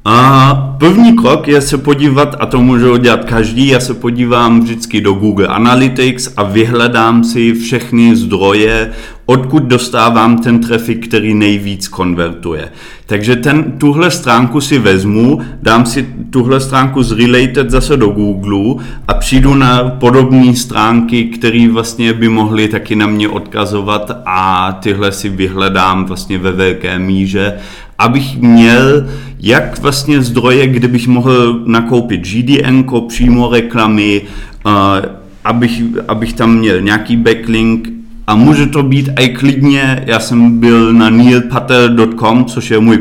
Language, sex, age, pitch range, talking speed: Czech, male, 30-49, 110-125 Hz, 135 wpm